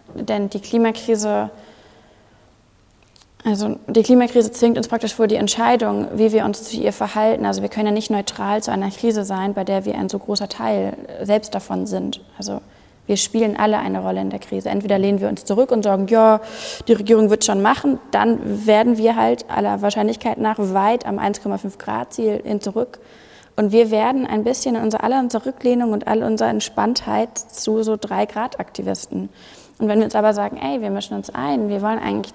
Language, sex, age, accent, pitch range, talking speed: German, female, 20-39, German, 190-225 Hz, 190 wpm